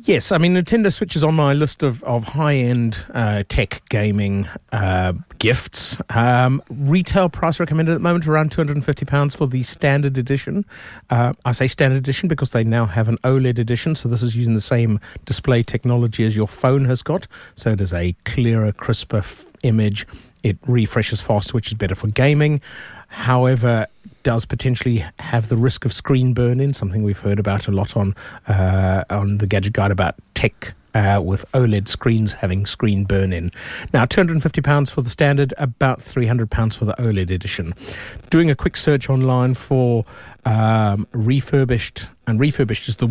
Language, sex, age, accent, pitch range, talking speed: English, male, 30-49, British, 105-140 Hz, 170 wpm